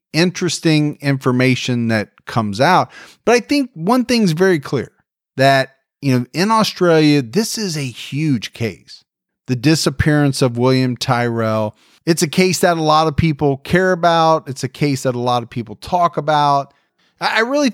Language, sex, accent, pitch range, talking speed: English, male, American, 125-170 Hz, 165 wpm